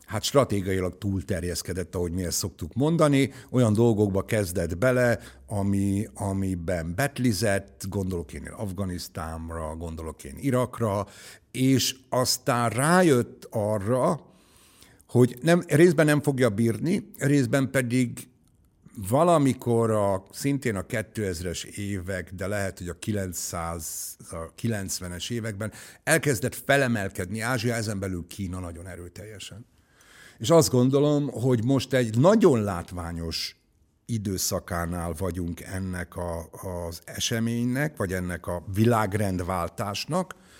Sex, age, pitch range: male, 60-79, 90-125 Hz